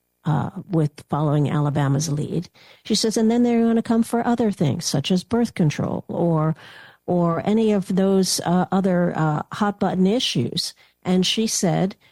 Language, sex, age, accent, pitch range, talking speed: English, female, 50-69, American, 155-200 Hz, 165 wpm